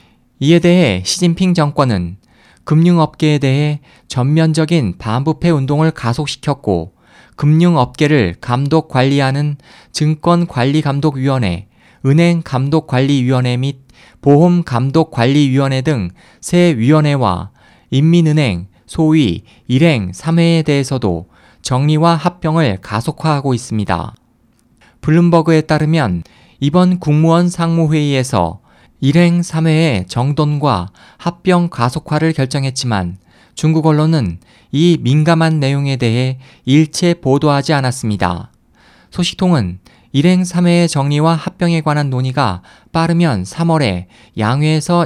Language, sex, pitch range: Korean, male, 115-160 Hz